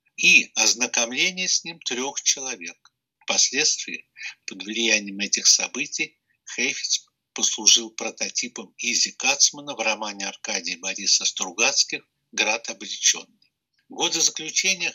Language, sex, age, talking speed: Russian, male, 60-79, 105 wpm